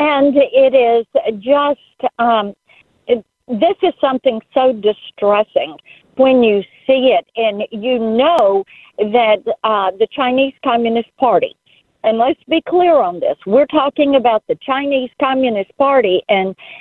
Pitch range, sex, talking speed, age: 220-280 Hz, female, 130 wpm, 50-69